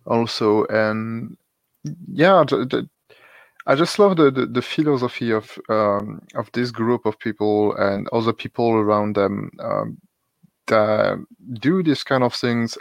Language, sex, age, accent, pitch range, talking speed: English, male, 30-49, French, 110-140 Hz, 145 wpm